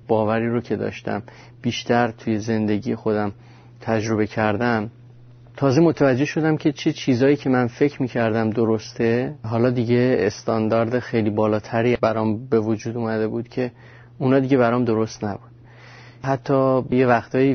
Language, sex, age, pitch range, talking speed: Persian, male, 30-49, 110-125 Hz, 135 wpm